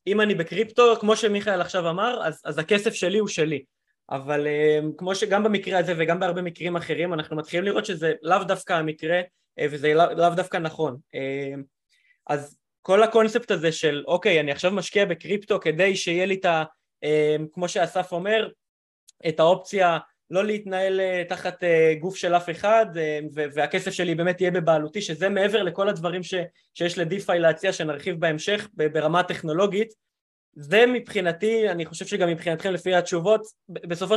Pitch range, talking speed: 160-200 Hz, 155 wpm